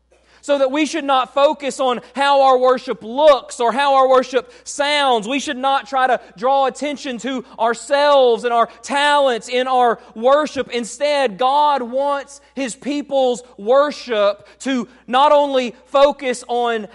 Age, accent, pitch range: 30-49, American, 185-270 Hz